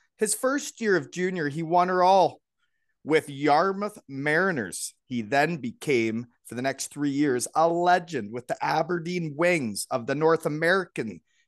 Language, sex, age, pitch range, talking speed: English, male, 30-49, 150-195 Hz, 155 wpm